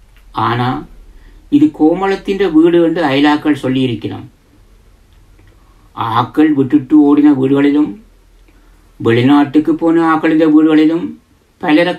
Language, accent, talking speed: Tamil, native, 80 wpm